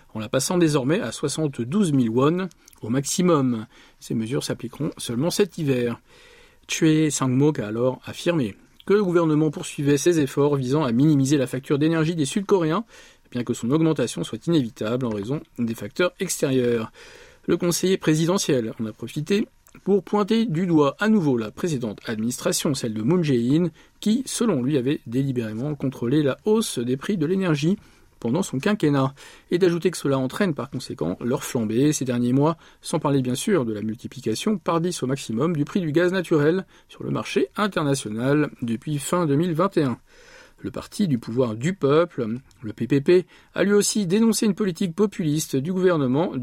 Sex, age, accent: male, 40-59, French